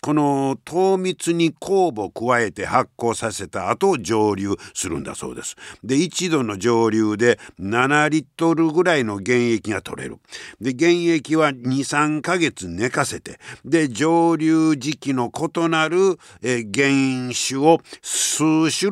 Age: 60-79